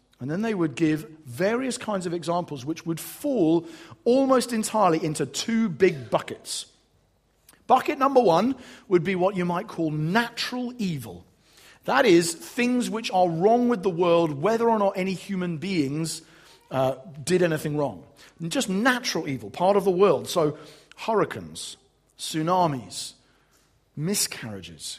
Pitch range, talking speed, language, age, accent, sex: 150-200 Hz, 140 wpm, English, 40-59, British, male